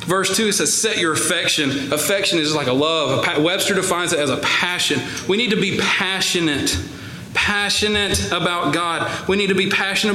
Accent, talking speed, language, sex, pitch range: American, 175 wpm, English, male, 155-195 Hz